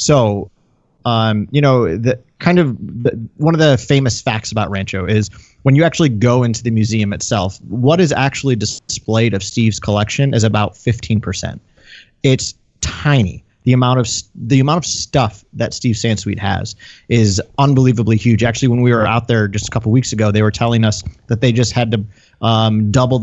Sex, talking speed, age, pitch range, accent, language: male, 190 wpm, 30-49, 110-135 Hz, American, English